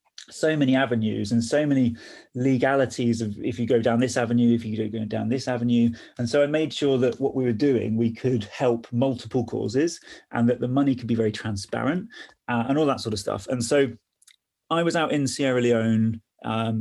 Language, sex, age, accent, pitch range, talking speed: English, male, 30-49, British, 115-135 Hz, 210 wpm